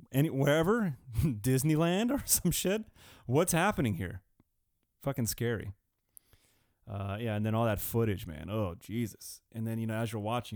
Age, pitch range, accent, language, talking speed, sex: 30-49, 100-120 Hz, American, English, 160 wpm, male